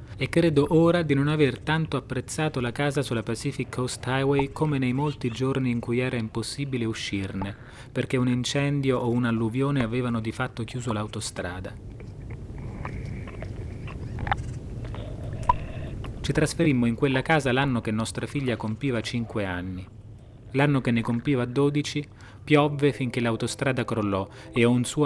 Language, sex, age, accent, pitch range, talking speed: Italian, male, 30-49, native, 110-130 Hz, 135 wpm